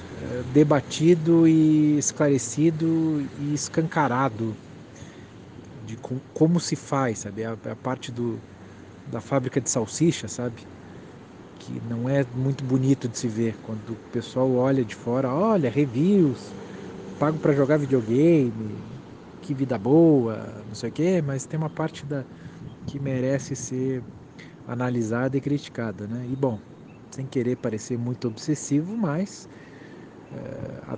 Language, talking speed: Portuguese, 125 wpm